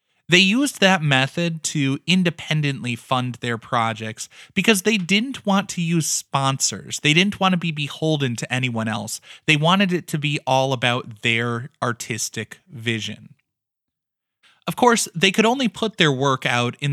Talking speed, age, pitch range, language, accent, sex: 160 wpm, 20-39, 125-180 Hz, English, American, male